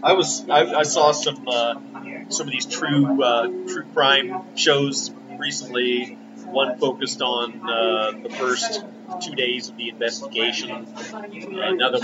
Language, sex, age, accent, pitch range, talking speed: English, male, 30-49, American, 125-155 Hz, 145 wpm